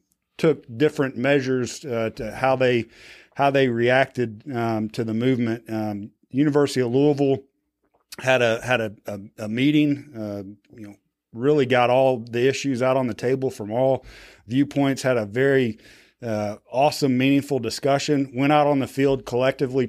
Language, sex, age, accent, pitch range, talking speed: English, male, 40-59, American, 115-140 Hz, 160 wpm